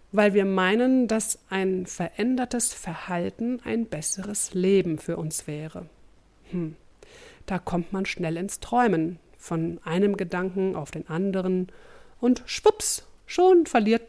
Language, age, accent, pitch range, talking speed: German, 50-69, German, 165-225 Hz, 130 wpm